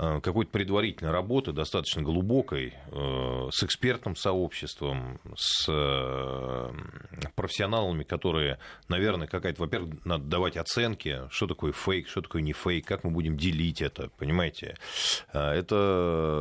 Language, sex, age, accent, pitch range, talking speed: Russian, male, 30-49, native, 75-105 Hz, 115 wpm